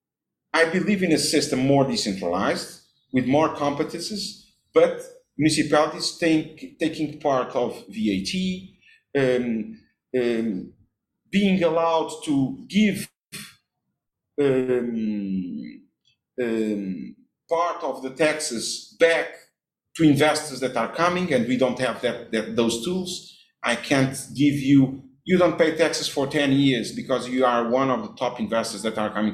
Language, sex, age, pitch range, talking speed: English, male, 50-69, 115-170 Hz, 135 wpm